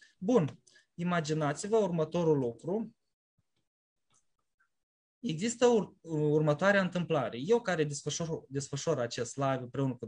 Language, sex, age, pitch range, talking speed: Romanian, male, 20-39, 140-195 Hz, 95 wpm